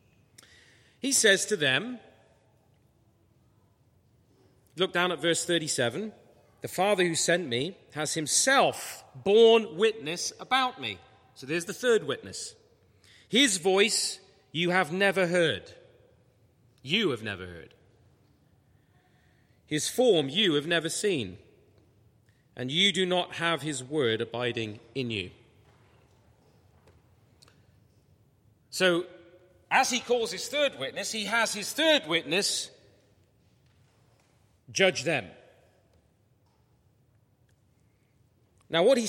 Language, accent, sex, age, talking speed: English, British, male, 30-49, 105 wpm